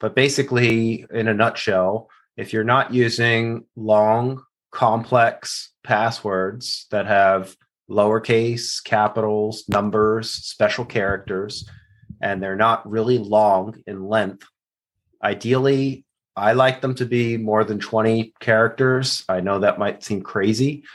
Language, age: English, 30-49